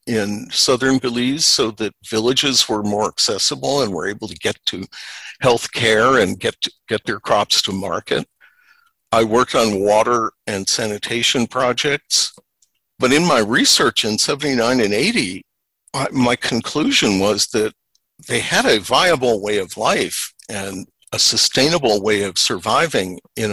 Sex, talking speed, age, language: male, 145 wpm, 50-69, English